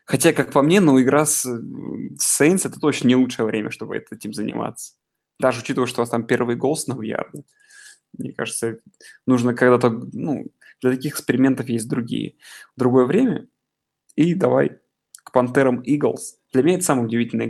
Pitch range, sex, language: 120-155 Hz, male, Russian